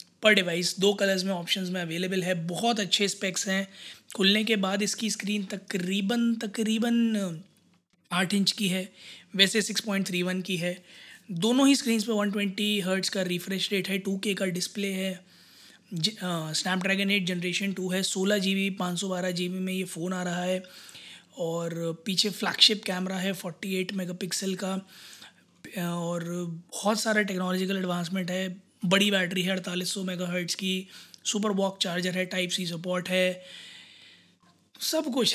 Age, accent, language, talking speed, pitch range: 20-39, native, Hindi, 155 wpm, 180-200 Hz